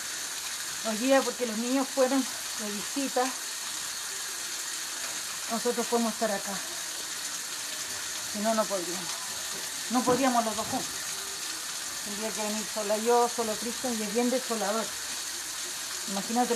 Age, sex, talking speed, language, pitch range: 40-59, female, 120 wpm, Spanish, 220-255 Hz